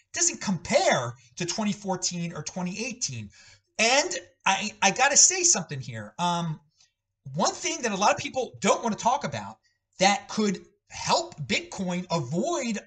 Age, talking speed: 40-59, 145 wpm